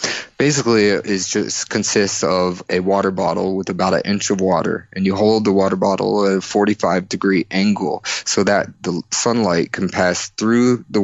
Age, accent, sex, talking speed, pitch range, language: 20-39, American, male, 175 wpm, 95-105 Hz, English